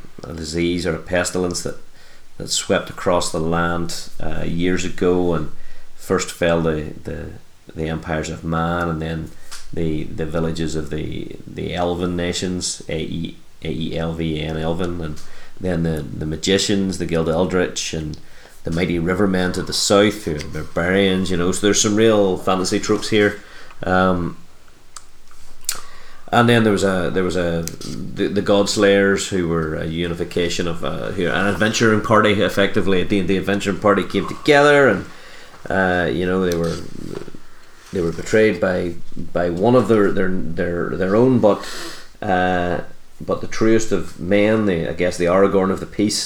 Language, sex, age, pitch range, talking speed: English, male, 30-49, 80-100 Hz, 160 wpm